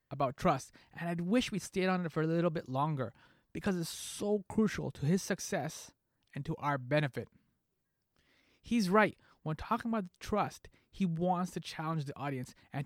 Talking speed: 180 wpm